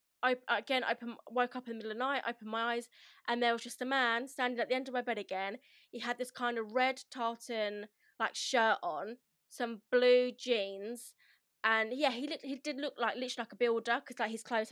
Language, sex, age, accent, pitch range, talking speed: English, female, 20-39, British, 220-260 Hz, 230 wpm